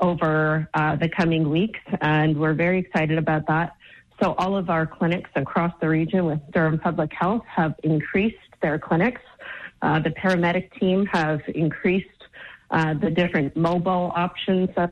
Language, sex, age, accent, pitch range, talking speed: English, female, 30-49, American, 160-185 Hz, 155 wpm